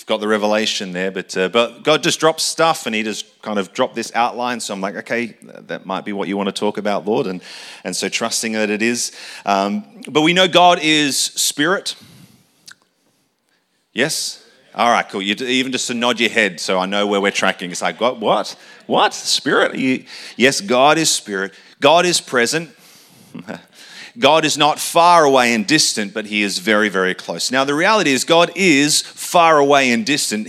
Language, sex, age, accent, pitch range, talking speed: English, male, 30-49, Australian, 110-155 Hz, 195 wpm